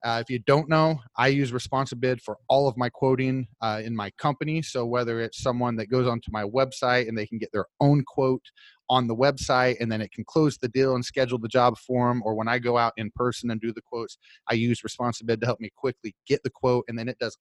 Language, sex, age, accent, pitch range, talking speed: English, male, 30-49, American, 110-130 Hz, 250 wpm